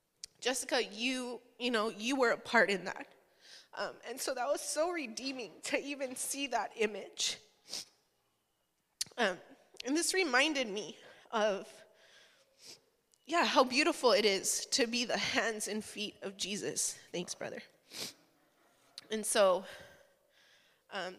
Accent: American